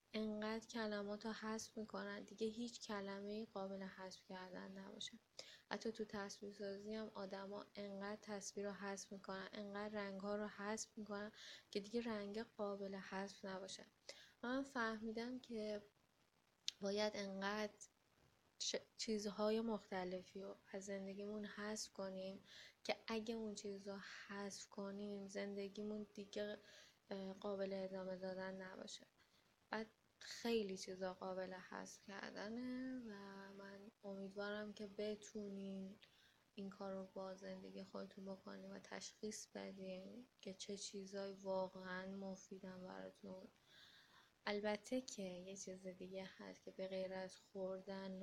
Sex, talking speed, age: female, 115 wpm, 20-39